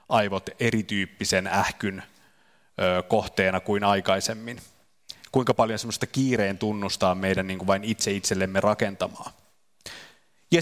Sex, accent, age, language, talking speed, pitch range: male, native, 30-49, Finnish, 95 wpm, 105-135 Hz